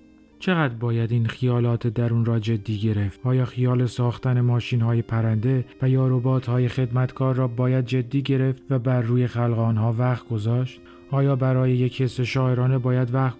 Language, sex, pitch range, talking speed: Persian, male, 115-130 Hz, 165 wpm